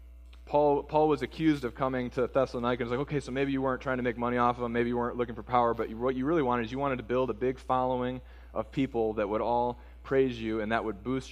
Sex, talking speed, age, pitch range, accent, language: male, 285 wpm, 20-39, 105-125 Hz, American, English